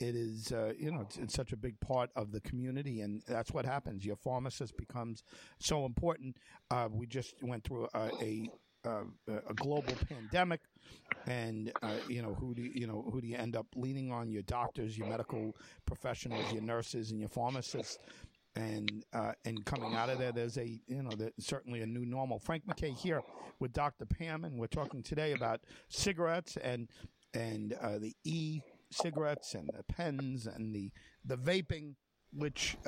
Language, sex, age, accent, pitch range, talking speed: English, male, 50-69, American, 110-135 Hz, 185 wpm